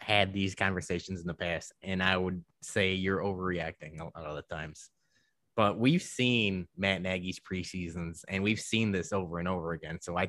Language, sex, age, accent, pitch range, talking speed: English, male, 20-39, American, 90-120 Hz, 190 wpm